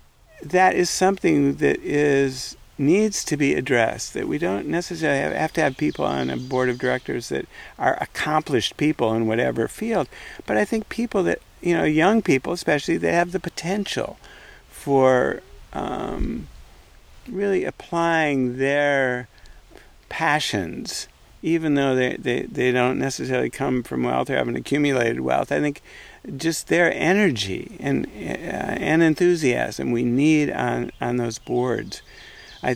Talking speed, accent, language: 145 wpm, American, English